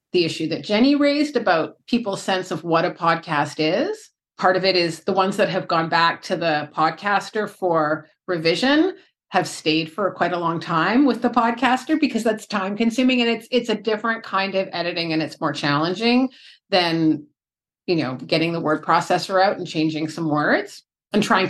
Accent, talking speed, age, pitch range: American, 190 wpm, 30-49, 170-225 Hz